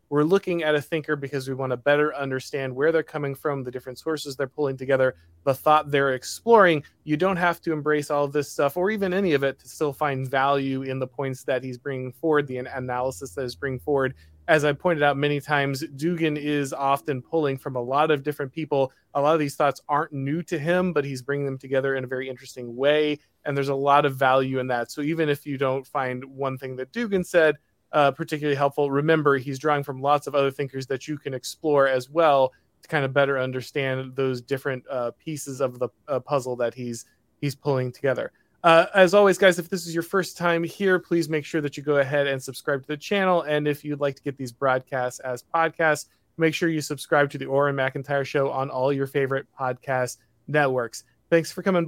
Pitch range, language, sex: 130-150 Hz, English, male